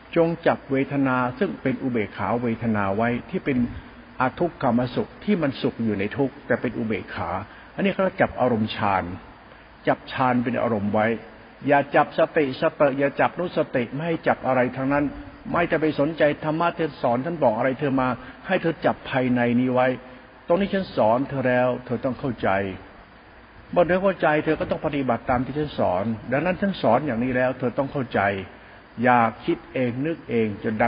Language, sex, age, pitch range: Thai, male, 60-79, 115-150 Hz